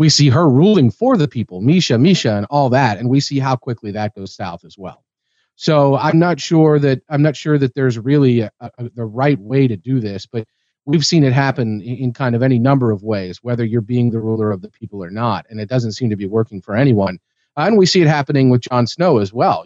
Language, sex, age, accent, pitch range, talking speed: English, male, 40-59, American, 110-140 Hz, 255 wpm